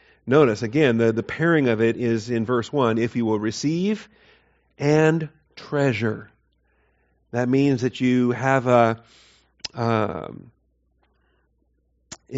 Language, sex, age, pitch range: English, male, 40-59, 115-140 Hz